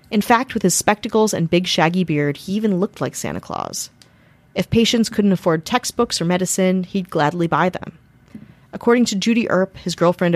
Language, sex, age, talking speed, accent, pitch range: English, female, 30-49, 185 wpm, American, 155-205 Hz